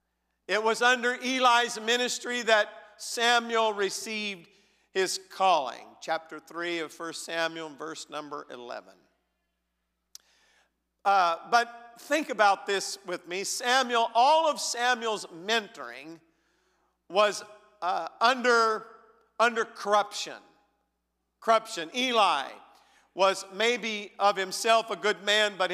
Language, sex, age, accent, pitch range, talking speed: English, male, 50-69, American, 185-240 Hz, 105 wpm